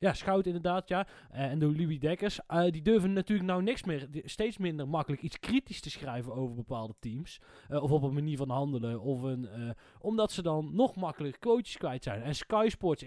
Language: Dutch